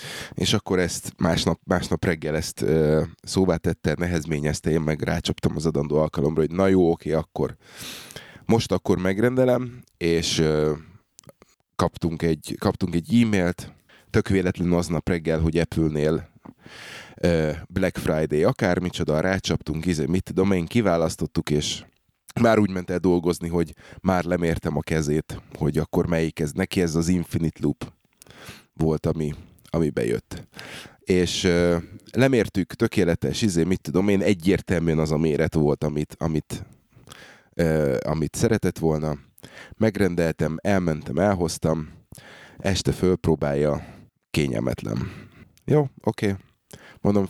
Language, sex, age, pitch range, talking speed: Hungarian, male, 20-39, 80-100 Hz, 120 wpm